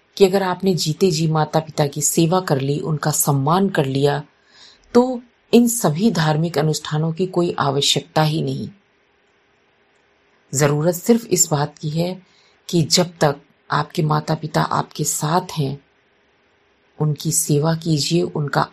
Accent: native